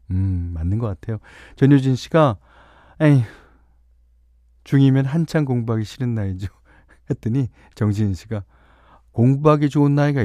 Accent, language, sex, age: native, Korean, male, 40-59